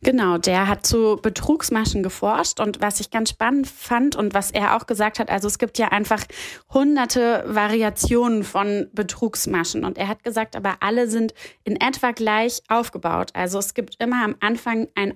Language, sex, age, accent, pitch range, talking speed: German, female, 20-39, German, 195-230 Hz, 180 wpm